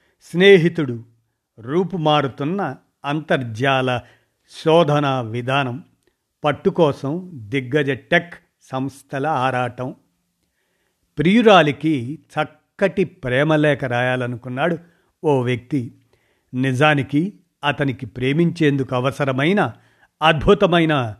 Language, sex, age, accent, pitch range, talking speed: Telugu, male, 50-69, native, 130-155 Hz, 60 wpm